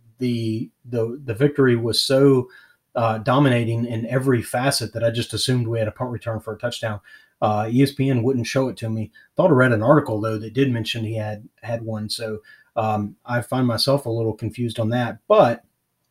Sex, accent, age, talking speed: male, American, 30-49, 200 wpm